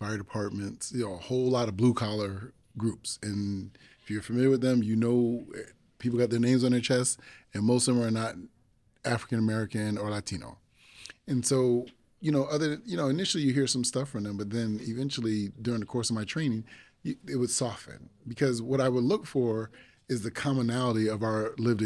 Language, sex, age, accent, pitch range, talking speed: English, male, 30-49, American, 110-130 Hz, 200 wpm